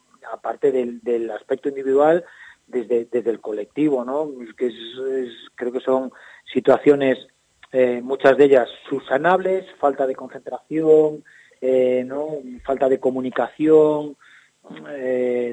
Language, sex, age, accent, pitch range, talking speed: Spanish, male, 30-49, Spanish, 125-150 Hz, 120 wpm